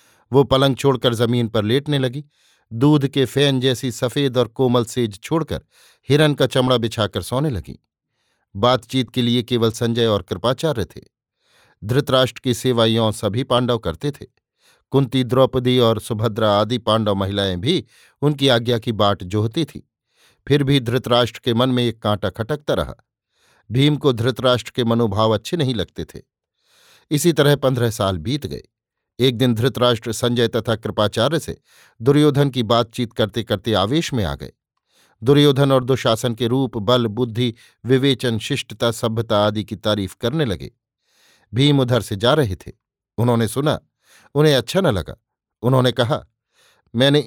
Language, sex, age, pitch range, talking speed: Hindi, male, 50-69, 110-135 Hz, 155 wpm